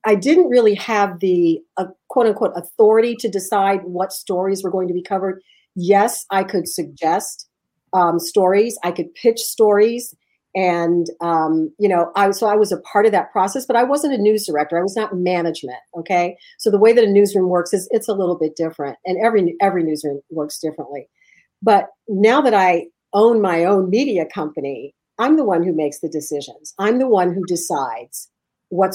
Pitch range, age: 165-210 Hz, 50-69